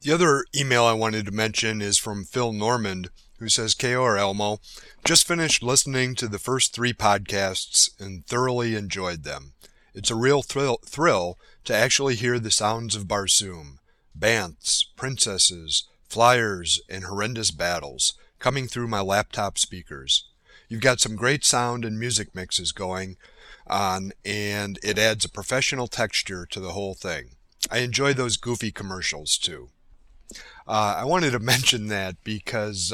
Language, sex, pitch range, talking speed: English, male, 100-120 Hz, 150 wpm